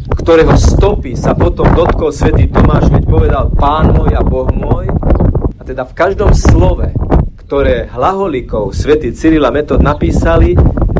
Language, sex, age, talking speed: Slovak, male, 40-59, 140 wpm